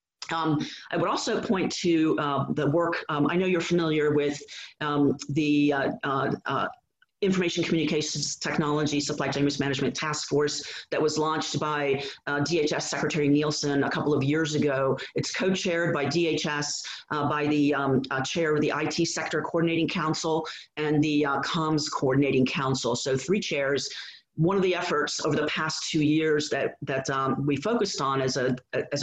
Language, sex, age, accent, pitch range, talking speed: English, female, 40-59, American, 140-160 Hz, 175 wpm